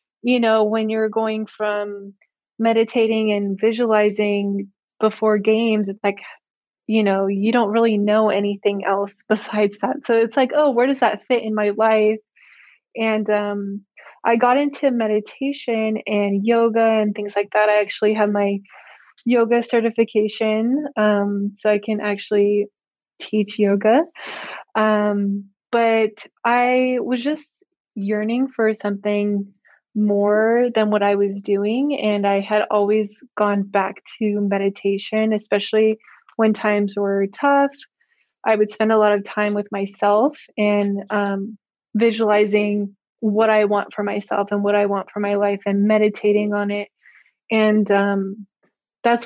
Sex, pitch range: female, 205-225 Hz